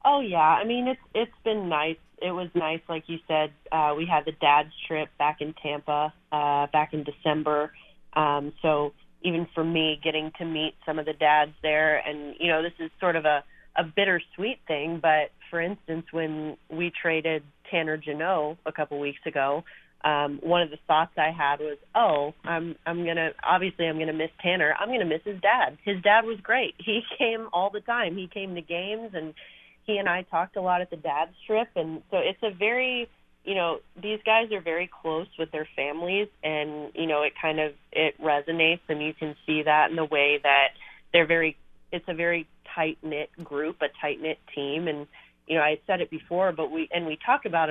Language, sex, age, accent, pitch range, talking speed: English, female, 30-49, American, 150-175 Hz, 215 wpm